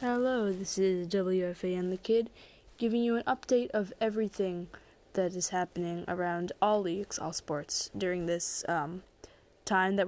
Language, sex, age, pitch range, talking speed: English, female, 10-29, 190-240 Hz, 155 wpm